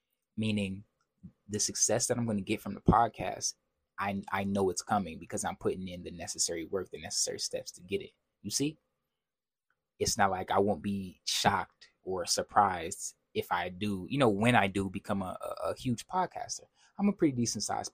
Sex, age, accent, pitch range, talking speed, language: male, 20-39, American, 100-125 Hz, 195 wpm, English